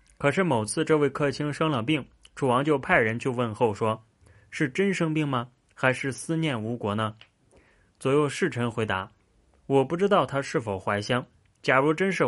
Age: 20-39